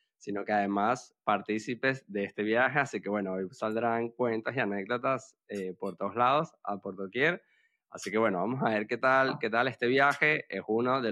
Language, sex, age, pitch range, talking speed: Spanish, male, 20-39, 105-145 Hz, 200 wpm